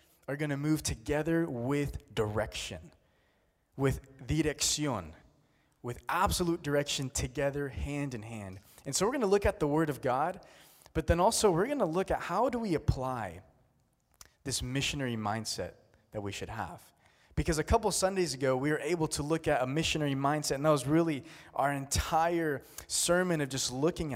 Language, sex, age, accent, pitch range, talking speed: English, male, 20-39, American, 105-160 Hz, 175 wpm